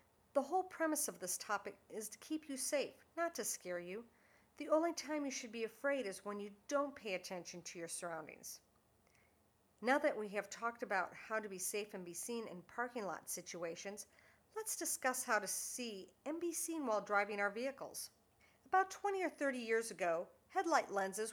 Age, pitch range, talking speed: 50-69, 185-270 Hz, 190 wpm